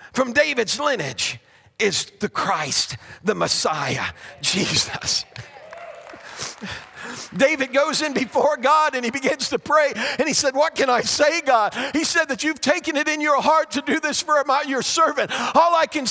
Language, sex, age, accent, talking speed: English, male, 50-69, American, 170 wpm